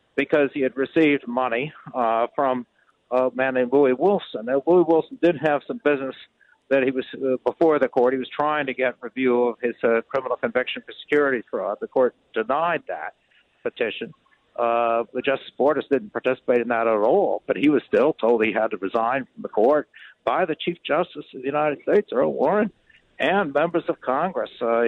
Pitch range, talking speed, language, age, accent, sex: 120-150 Hz, 195 wpm, English, 60-79, American, male